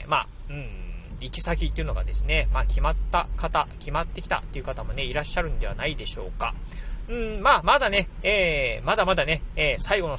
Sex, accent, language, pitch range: male, native, Japanese, 125-175 Hz